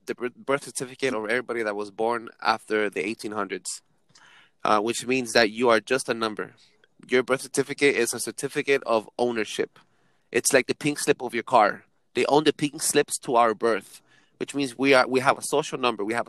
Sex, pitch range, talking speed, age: male, 115-140 Hz, 205 wpm, 20-39